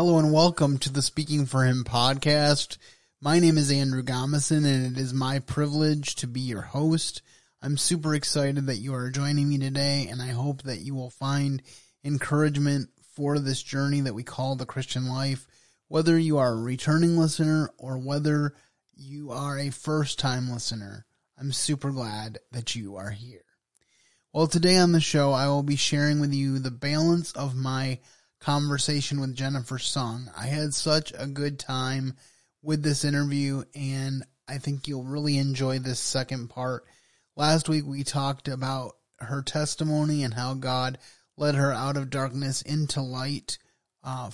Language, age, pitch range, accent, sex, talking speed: English, 20-39, 130-145 Hz, American, male, 170 wpm